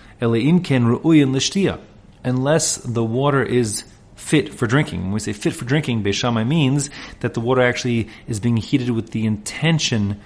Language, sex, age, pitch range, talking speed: English, male, 30-49, 105-130 Hz, 140 wpm